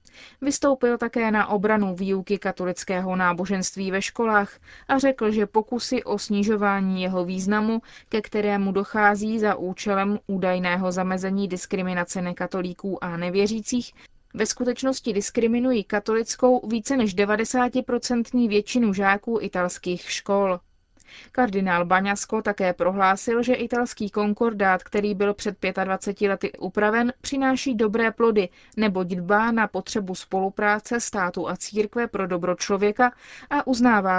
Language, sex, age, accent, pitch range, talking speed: Czech, female, 20-39, native, 190-230 Hz, 120 wpm